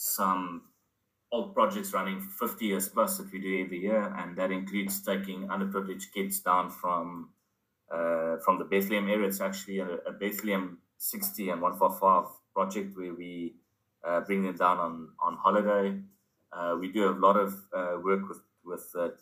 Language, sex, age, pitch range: English, male, 20-39, 90-100 Hz